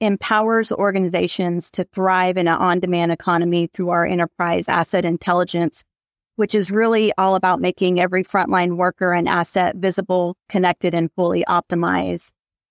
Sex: female